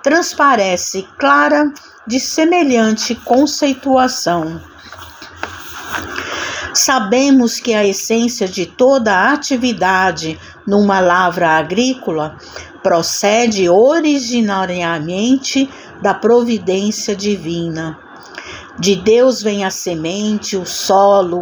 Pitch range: 190-260 Hz